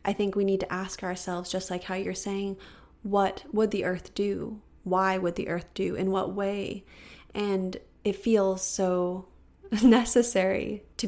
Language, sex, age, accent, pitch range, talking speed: English, female, 20-39, American, 185-210 Hz, 170 wpm